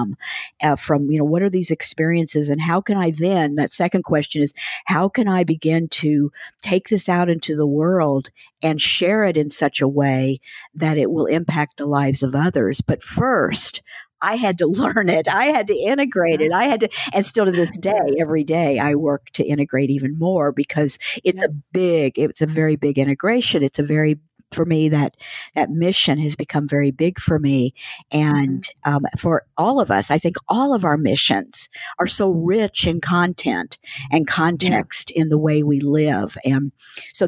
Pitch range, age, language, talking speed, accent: 145-175 Hz, 50-69, English, 195 wpm, American